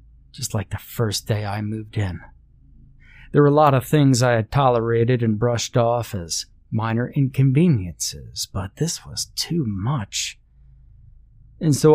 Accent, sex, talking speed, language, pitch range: American, male, 150 wpm, English, 105-125 Hz